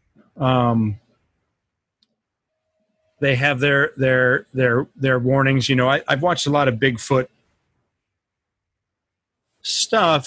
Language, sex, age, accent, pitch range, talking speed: English, male, 30-49, American, 110-140 Hz, 105 wpm